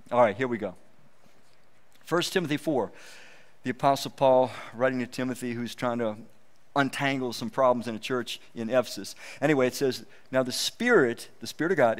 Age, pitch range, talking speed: 50-69, 120-155 Hz, 175 wpm